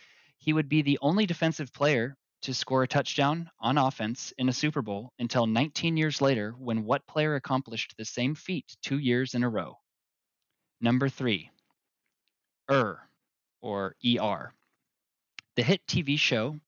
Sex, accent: male, American